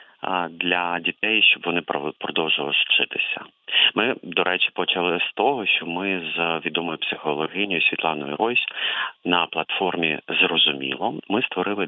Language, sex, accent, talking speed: Ukrainian, male, native, 120 wpm